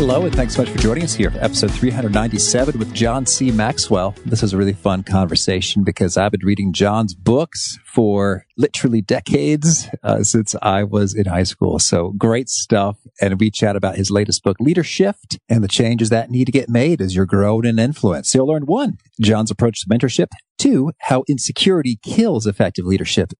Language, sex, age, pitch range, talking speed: English, male, 40-59, 100-130 Hz, 190 wpm